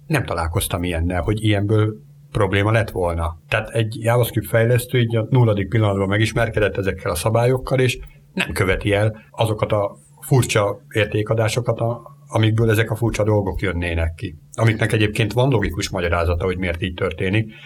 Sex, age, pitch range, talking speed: male, 60-79, 100-125 Hz, 150 wpm